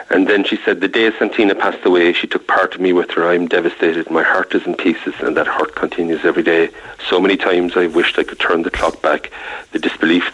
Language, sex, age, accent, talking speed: English, male, 40-59, Irish, 250 wpm